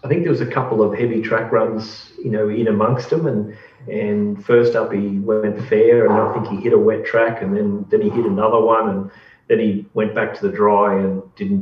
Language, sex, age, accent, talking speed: English, male, 40-59, Australian, 245 wpm